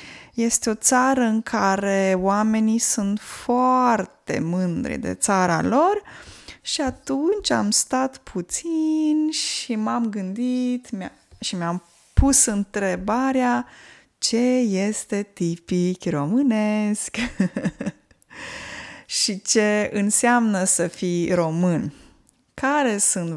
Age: 20-39